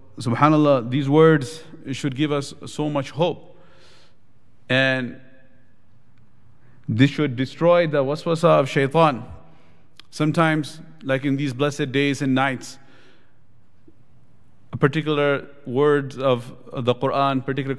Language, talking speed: English, 110 wpm